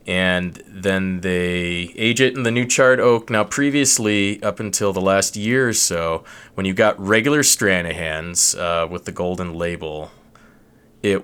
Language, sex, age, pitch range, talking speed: English, male, 20-39, 85-105 Hz, 160 wpm